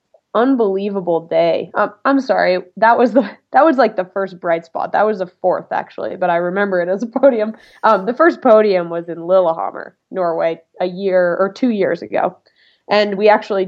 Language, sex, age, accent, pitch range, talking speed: English, female, 20-39, American, 175-210 Hz, 195 wpm